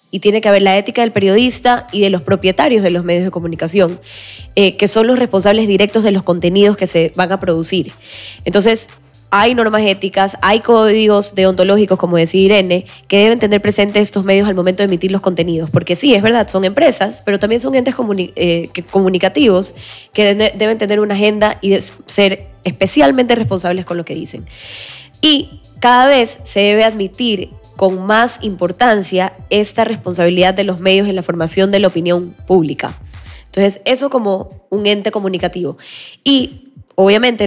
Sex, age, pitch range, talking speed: female, 10-29, 180-215 Hz, 180 wpm